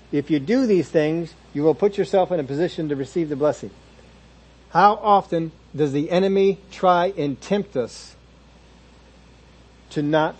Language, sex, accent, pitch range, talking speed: English, male, American, 130-175 Hz, 155 wpm